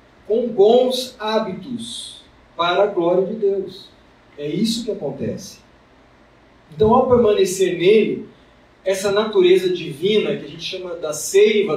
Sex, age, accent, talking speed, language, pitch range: male, 40-59, Brazilian, 125 wpm, Portuguese, 165-210 Hz